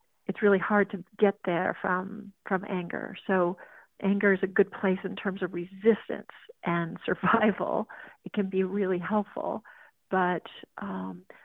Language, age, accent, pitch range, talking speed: English, 50-69, American, 185-210 Hz, 145 wpm